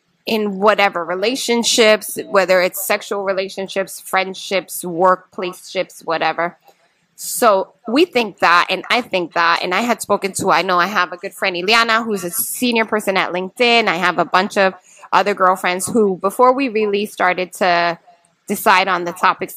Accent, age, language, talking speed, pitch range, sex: American, 20-39, English, 165 wpm, 185-230 Hz, female